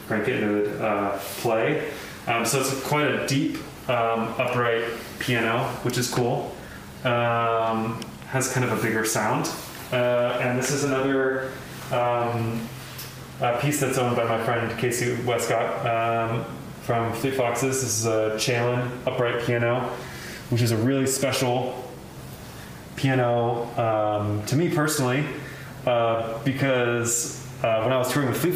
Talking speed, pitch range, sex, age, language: 145 wpm, 115-130 Hz, male, 20-39, English